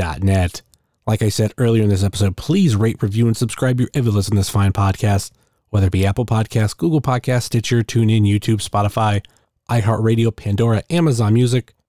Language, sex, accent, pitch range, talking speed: English, male, American, 105-125 Hz, 175 wpm